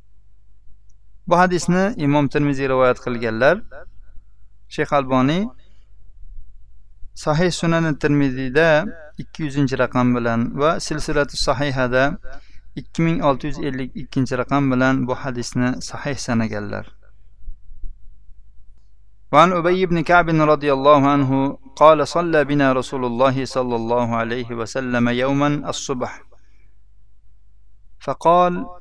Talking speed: 65 wpm